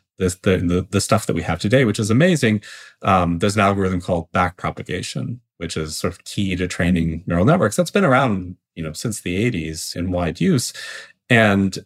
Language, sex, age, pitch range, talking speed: English, male, 30-49, 90-120 Hz, 190 wpm